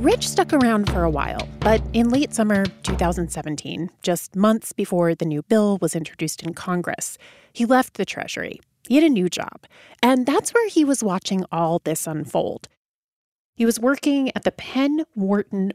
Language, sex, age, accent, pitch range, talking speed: English, female, 30-49, American, 170-260 Hz, 175 wpm